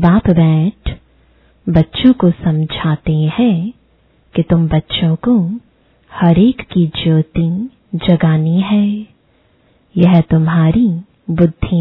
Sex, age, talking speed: female, 20-39, 95 wpm